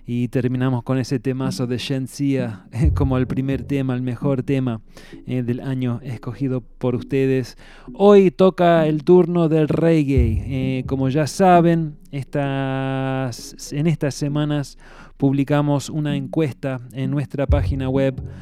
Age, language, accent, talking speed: 20-39, English, Argentinian, 125 wpm